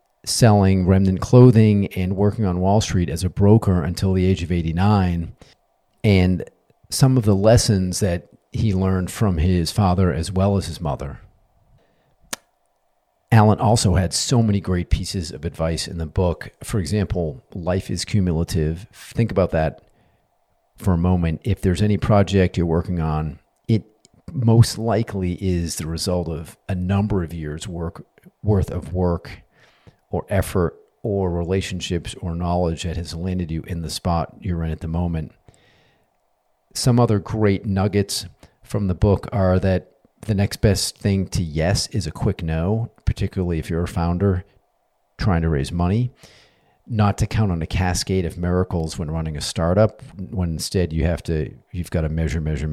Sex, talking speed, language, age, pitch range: male, 165 wpm, English, 40-59, 85-105 Hz